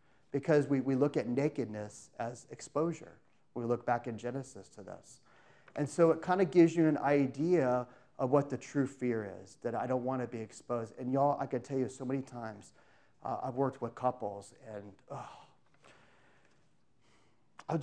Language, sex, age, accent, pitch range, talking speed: English, male, 30-49, American, 115-140 Hz, 180 wpm